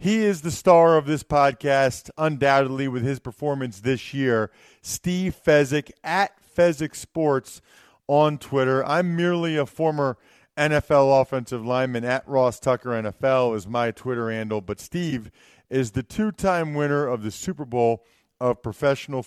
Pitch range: 120-155 Hz